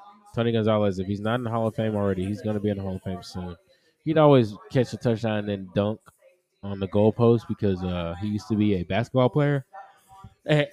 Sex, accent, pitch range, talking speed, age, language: male, American, 100-165 Hz, 230 wpm, 20-39, English